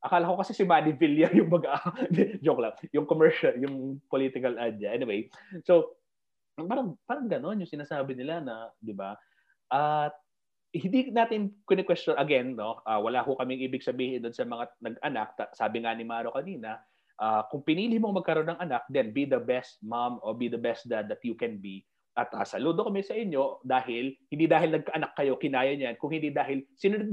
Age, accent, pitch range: 30-49, Filipino, 125-170 Hz